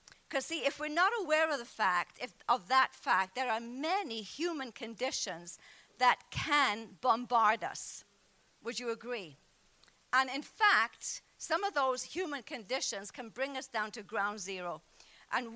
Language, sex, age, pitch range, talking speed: English, female, 50-69, 215-290 Hz, 160 wpm